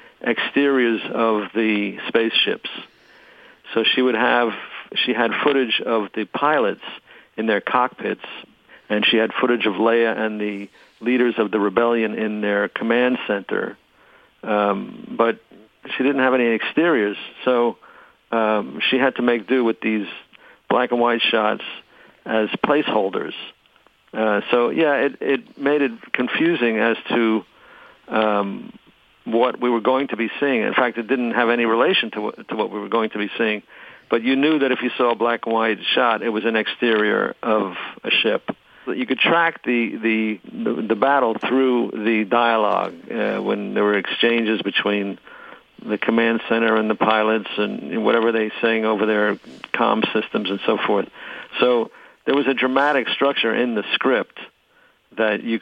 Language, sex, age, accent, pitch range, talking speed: English, male, 50-69, American, 110-125 Hz, 160 wpm